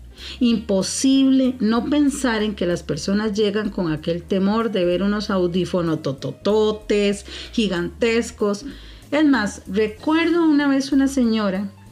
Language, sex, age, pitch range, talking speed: Spanish, female, 40-59, 165-230 Hz, 120 wpm